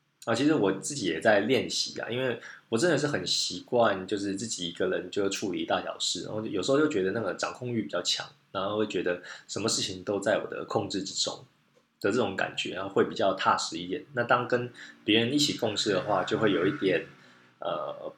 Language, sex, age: Chinese, male, 20-39